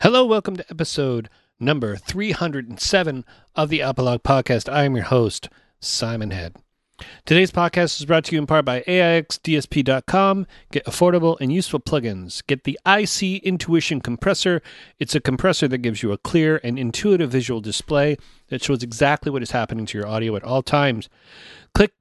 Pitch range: 120-165 Hz